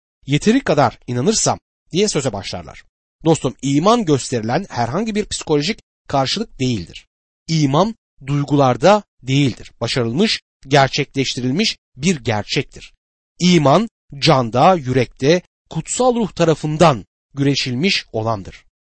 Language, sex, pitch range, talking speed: Turkish, male, 120-185 Hz, 90 wpm